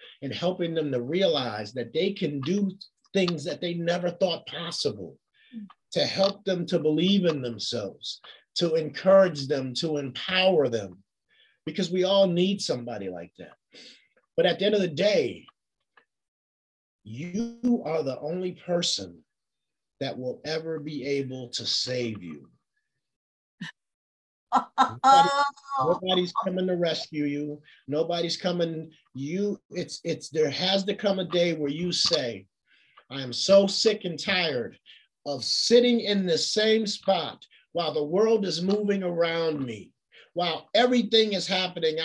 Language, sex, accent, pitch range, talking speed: English, male, American, 150-200 Hz, 140 wpm